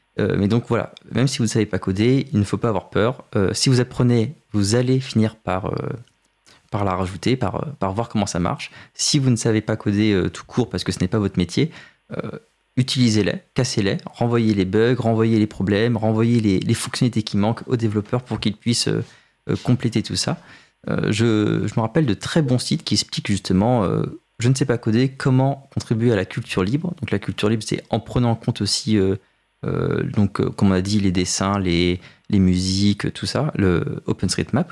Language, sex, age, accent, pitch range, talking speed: French, male, 20-39, French, 95-125 Hz, 215 wpm